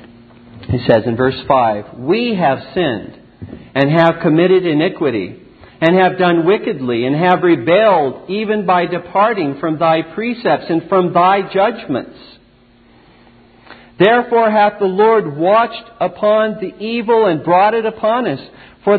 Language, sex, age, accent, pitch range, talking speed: English, male, 50-69, American, 125-195 Hz, 135 wpm